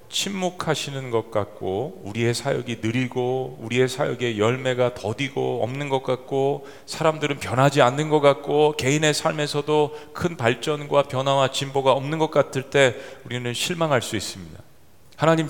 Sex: male